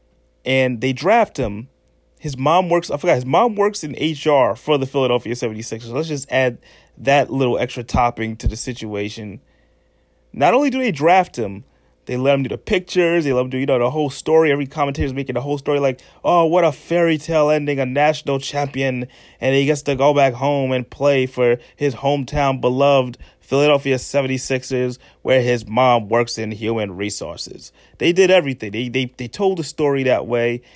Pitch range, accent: 125-160 Hz, American